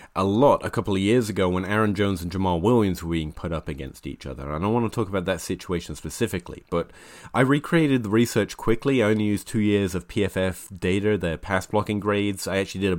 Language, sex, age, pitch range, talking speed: English, male, 30-49, 90-110 Hz, 235 wpm